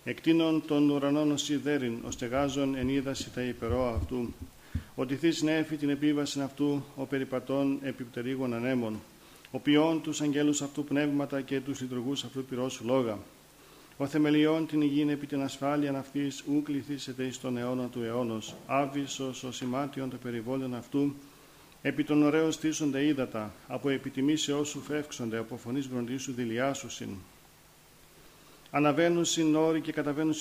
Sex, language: male, Greek